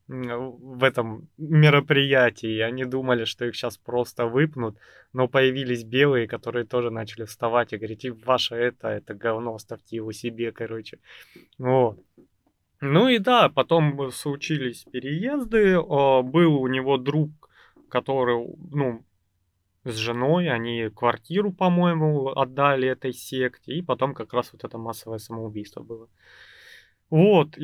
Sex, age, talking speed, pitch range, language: male, 20-39, 130 wpm, 115-155 Hz, Russian